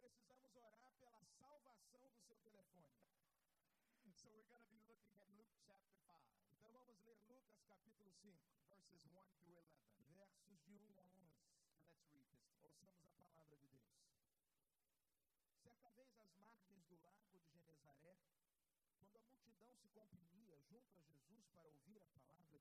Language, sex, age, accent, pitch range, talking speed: Portuguese, male, 50-69, Brazilian, 165-210 Hz, 110 wpm